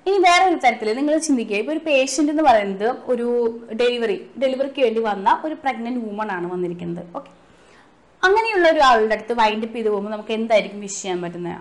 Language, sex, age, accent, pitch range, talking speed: Malayalam, female, 20-39, native, 225-300 Hz, 170 wpm